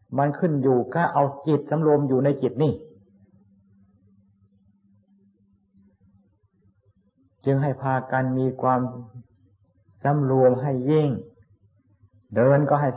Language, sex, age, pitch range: Thai, male, 60-79, 125-150 Hz